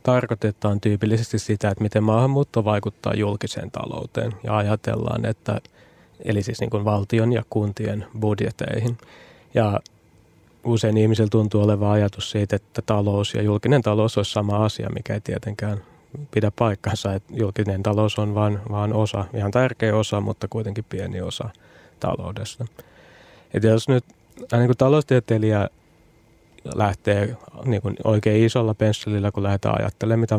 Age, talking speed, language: 20-39, 130 wpm, Finnish